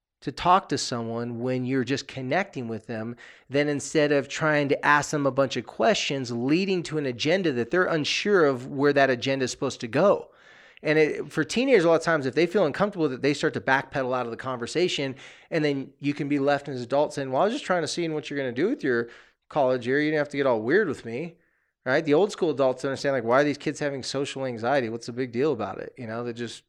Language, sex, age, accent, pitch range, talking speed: English, male, 30-49, American, 120-155 Hz, 255 wpm